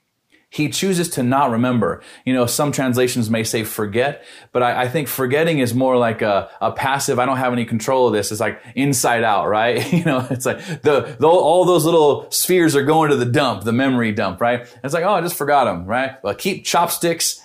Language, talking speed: English, 225 wpm